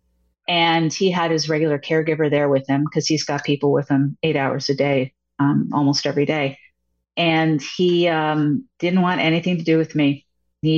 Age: 40-59